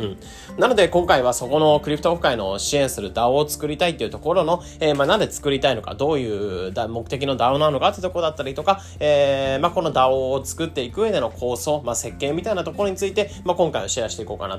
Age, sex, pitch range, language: 20-39, male, 115-165 Hz, Japanese